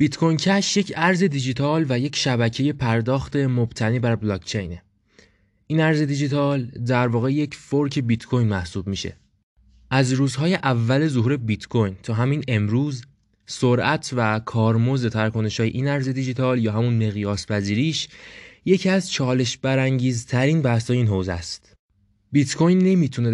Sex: male